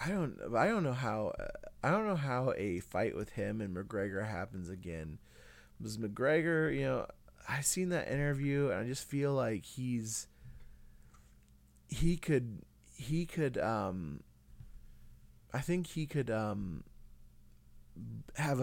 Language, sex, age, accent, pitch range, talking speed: English, male, 30-49, American, 95-135 Hz, 140 wpm